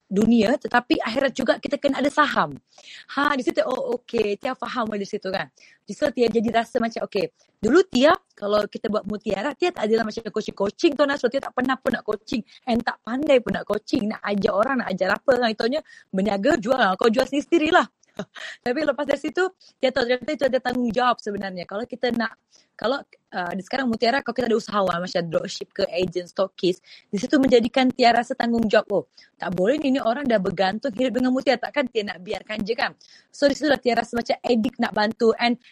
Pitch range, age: 205-265 Hz, 20-39